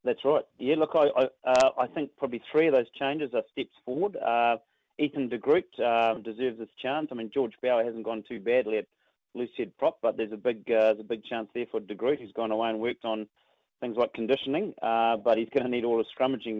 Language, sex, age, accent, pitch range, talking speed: English, male, 30-49, Australian, 110-125 Hz, 240 wpm